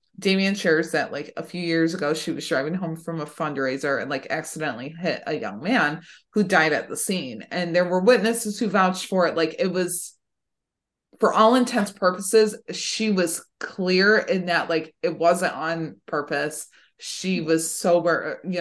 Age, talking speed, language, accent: 20-39, 185 wpm, English, American